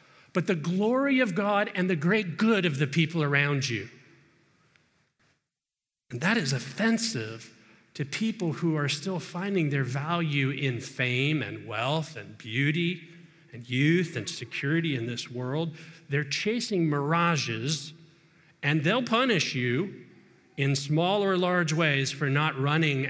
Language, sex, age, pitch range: English, male, 40-59, 125-160 Hz